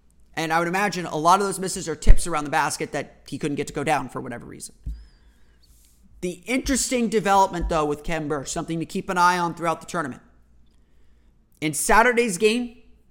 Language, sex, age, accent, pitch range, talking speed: English, male, 30-49, American, 140-195 Hz, 195 wpm